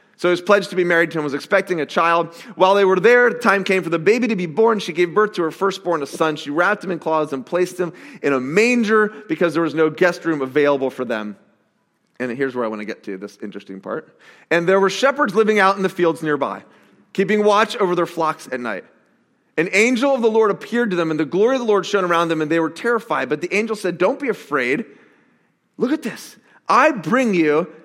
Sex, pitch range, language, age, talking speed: male, 160-215 Hz, English, 30-49, 250 wpm